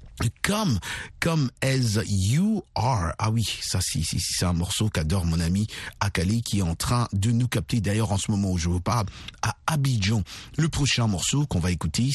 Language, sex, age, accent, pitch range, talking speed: French, male, 50-69, French, 95-130 Hz, 205 wpm